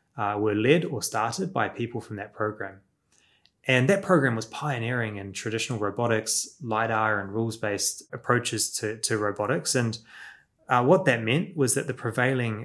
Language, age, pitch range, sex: English, 20-39, 105-125 Hz, male